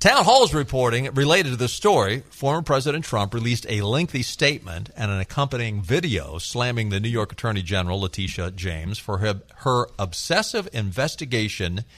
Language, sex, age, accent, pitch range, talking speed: English, male, 50-69, American, 95-130 Hz, 155 wpm